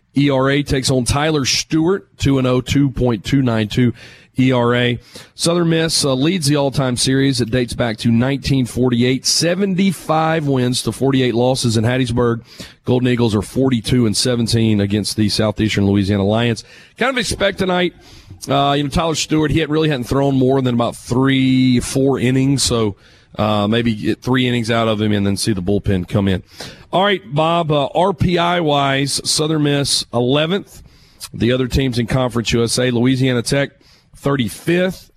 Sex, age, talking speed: male, 40-59, 160 wpm